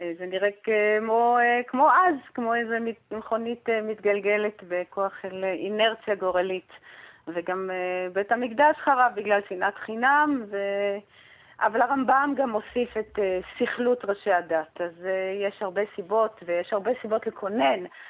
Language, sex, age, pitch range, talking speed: Hebrew, female, 30-49, 190-250 Hz, 120 wpm